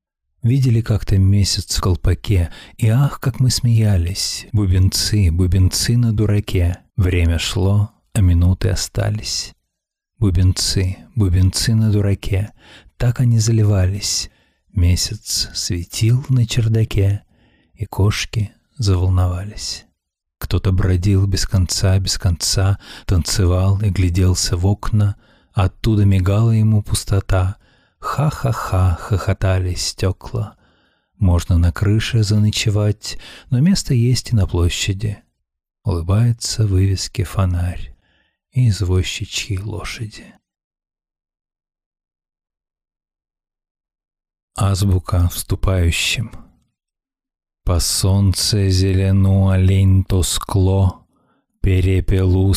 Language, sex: Russian, male